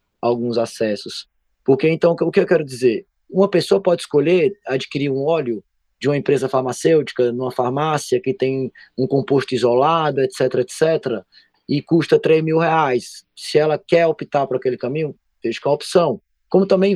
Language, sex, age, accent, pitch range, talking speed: Portuguese, male, 20-39, Brazilian, 125-165 Hz, 170 wpm